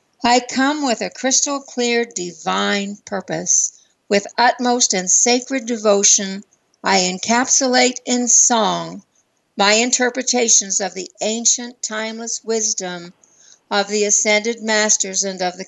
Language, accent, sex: English, American, female